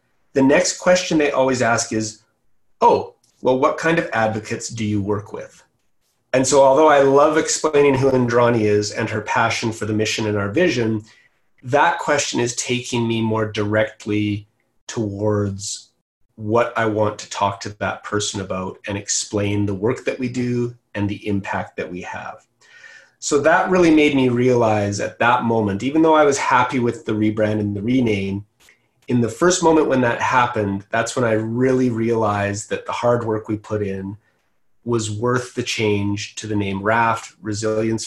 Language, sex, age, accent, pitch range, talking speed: English, male, 30-49, American, 105-135 Hz, 180 wpm